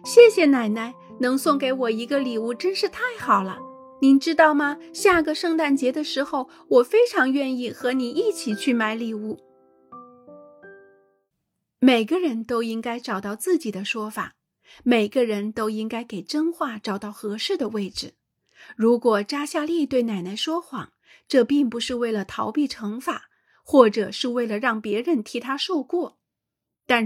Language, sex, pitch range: Chinese, female, 220-305 Hz